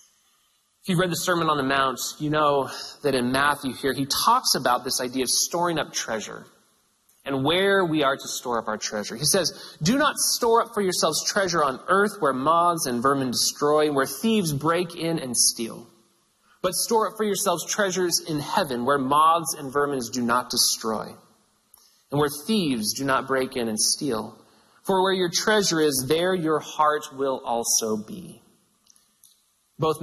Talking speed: 180 wpm